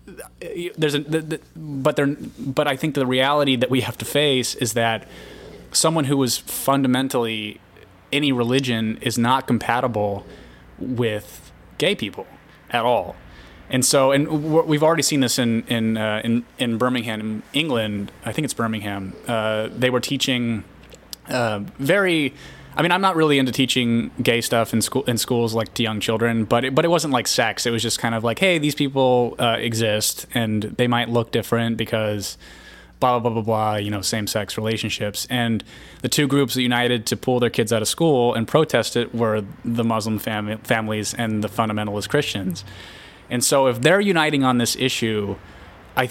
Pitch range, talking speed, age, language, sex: 110-135 Hz, 180 wpm, 20-39, English, male